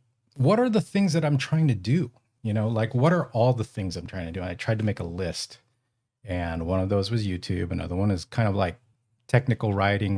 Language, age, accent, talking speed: English, 40-59, American, 250 wpm